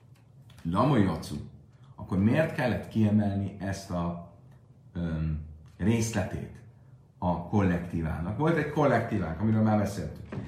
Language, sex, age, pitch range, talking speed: Hungarian, male, 40-59, 100-130 Hz, 90 wpm